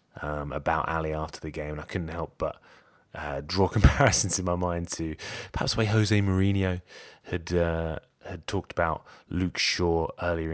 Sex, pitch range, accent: male, 80-105 Hz, British